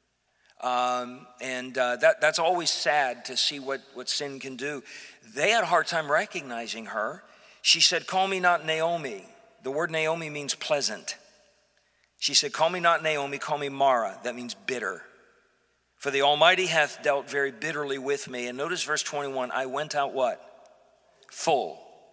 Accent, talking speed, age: American, 170 wpm, 50-69